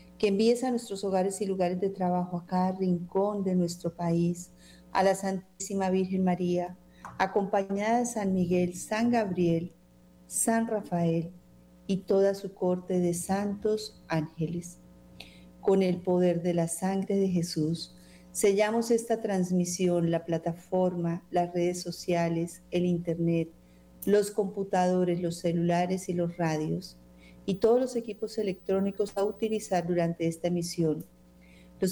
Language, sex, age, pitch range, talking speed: Spanish, female, 40-59, 155-195 Hz, 135 wpm